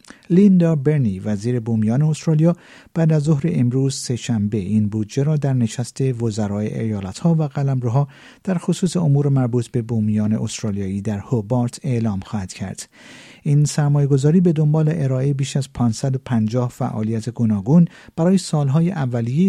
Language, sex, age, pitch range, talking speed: Persian, male, 50-69, 115-155 Hz, 140 wpm